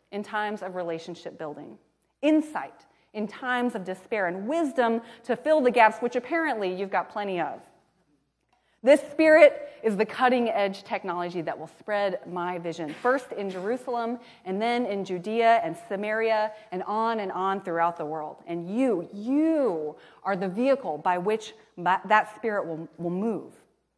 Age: 30-49